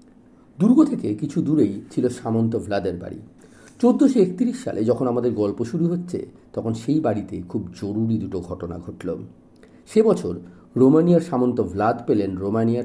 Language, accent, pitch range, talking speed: Bengali, native, 105-145 Hz, 140 wpm